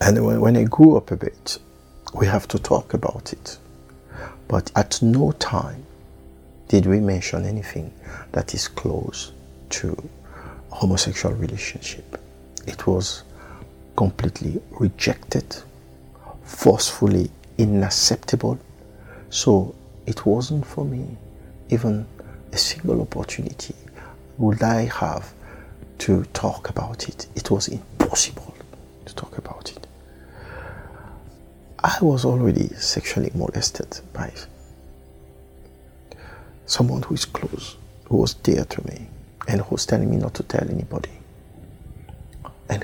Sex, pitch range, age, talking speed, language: male, 65-110 Hz, 50-69, 115 wpm, English